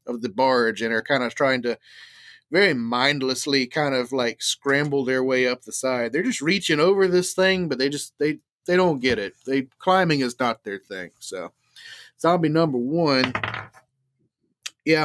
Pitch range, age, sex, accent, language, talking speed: 125-165 Hz, 30-49, male, American, English, 180 wpm